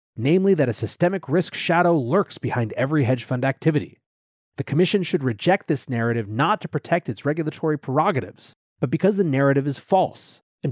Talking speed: 175 wpm